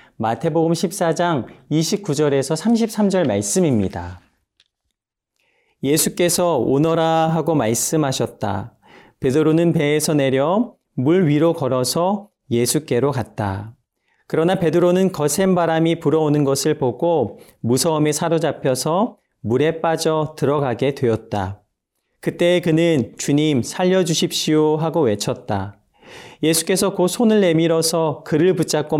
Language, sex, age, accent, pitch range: Korean, male, 40-59, native, 130-170 Hz